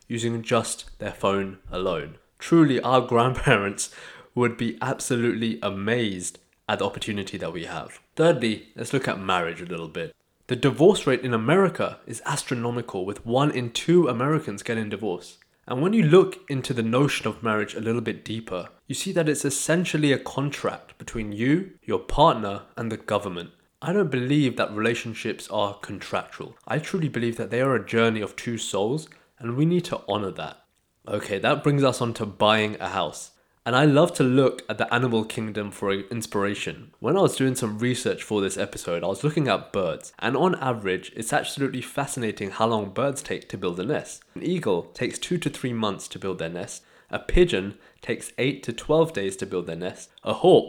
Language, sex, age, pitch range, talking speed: English, male, 20-39, 105-140 Hz, 195 wpm